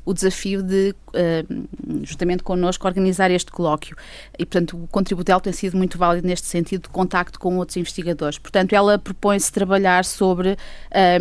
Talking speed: 155 wpm